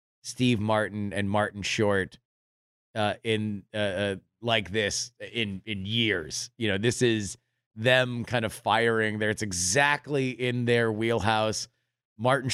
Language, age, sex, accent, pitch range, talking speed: English, 30-49, male, American, 110-140 Hz, 140 wpm